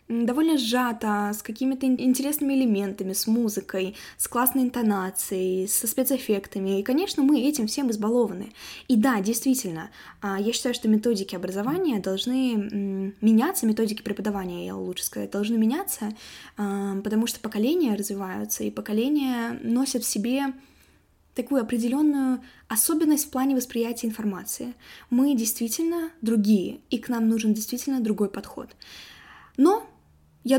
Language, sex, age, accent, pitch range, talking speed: Russian, female, 20-39, native, 215-260 Hz, 125 wpm